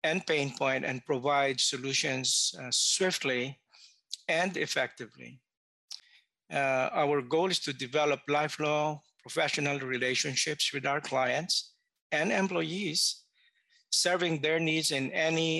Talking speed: 110 wpm